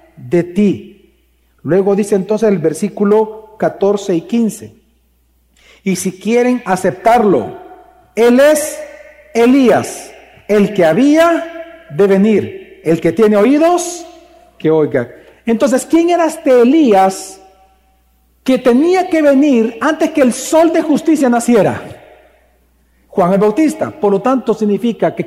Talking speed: 125 wpm